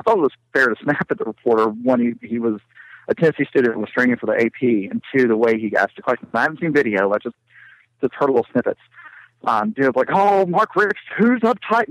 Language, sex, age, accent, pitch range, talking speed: English, male, 50-69, American, 120-185 Hz, 245 wpm